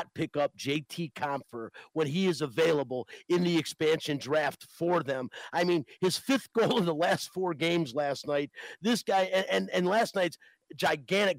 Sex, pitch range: male, 135-170 Hz